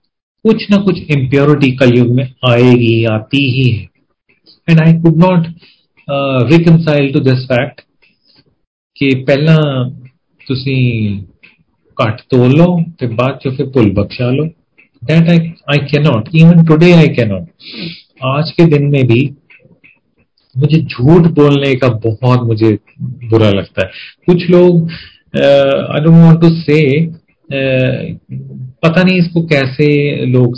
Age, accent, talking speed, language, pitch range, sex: 40-59, native, 115 wpm, Hindi, 120-160 Hz, male